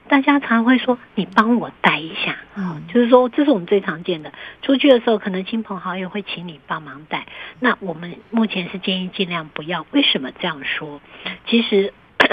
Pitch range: 175-220 Hz